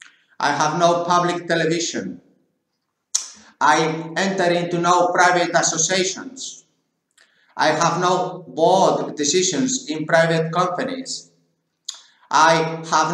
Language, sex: English, male